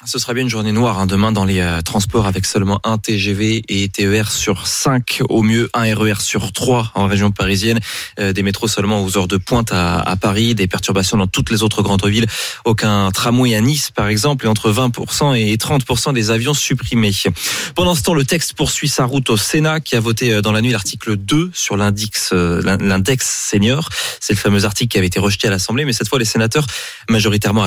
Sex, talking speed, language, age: male, 220 wpm, French, 20-39